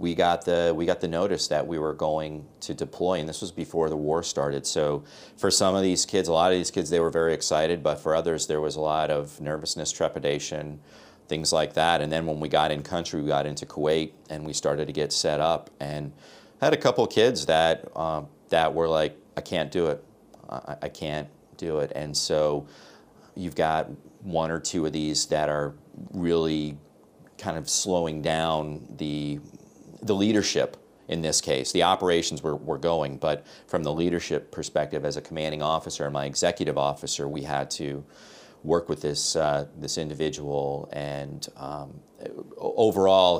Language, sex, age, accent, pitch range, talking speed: English, male, 30-49, American, 75-80 Hz, 190 wpm